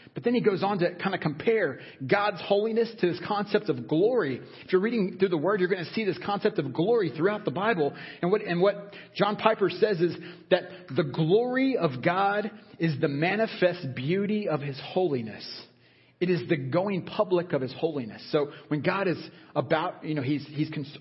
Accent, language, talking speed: American, English, 205 wpm